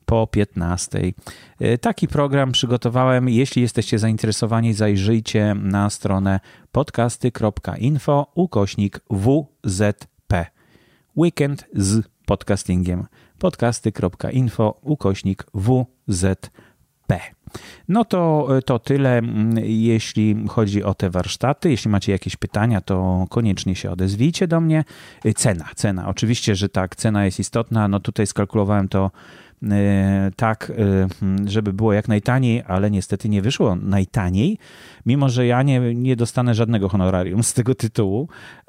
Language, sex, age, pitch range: Polish, male, 30-49, 100-125 Hz